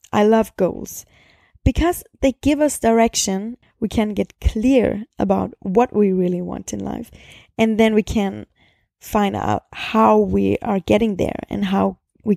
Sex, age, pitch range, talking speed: female, 20-39, 200-260 Hz, 160 wpm